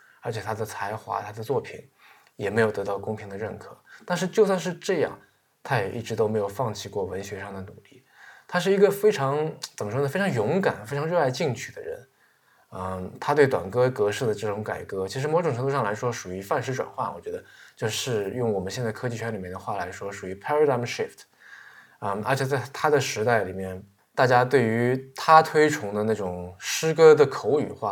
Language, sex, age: Chinese, male, 20-39